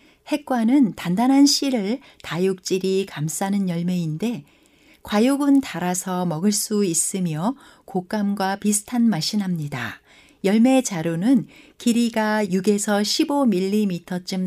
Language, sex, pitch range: Korean, female, 185-255 Hz